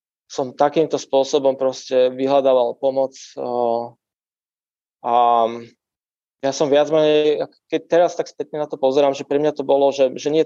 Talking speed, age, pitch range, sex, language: 155 wpm, 20-39, 125-145 Hz, male, Slovak